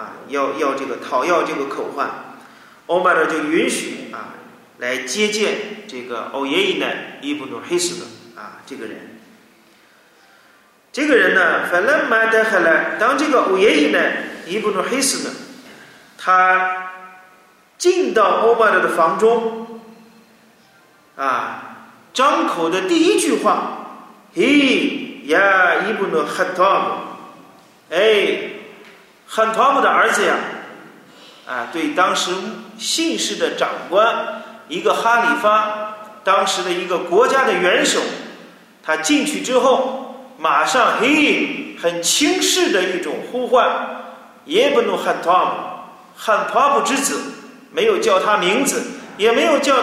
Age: 40-59